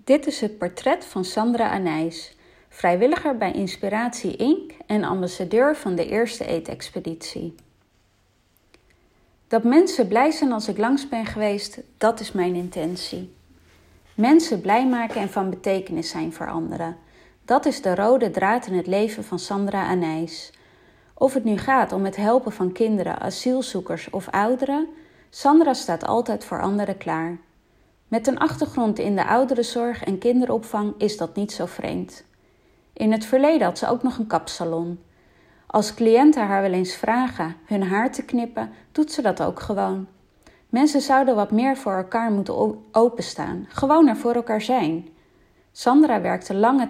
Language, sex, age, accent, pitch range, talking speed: Dutch, female, 30-49, Dutch, 185-245 Hz, 155 wpm